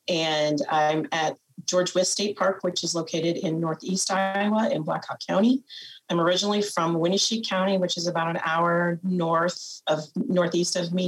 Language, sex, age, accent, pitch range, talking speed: English, female, 30-49, American, 160-190 Hz, 175 wpm